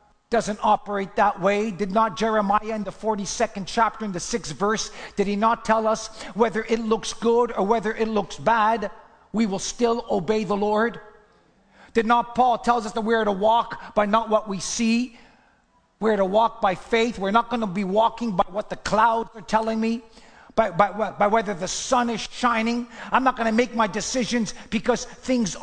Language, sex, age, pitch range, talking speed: English, male, 50-69, 210-235 Hz, 200 wpm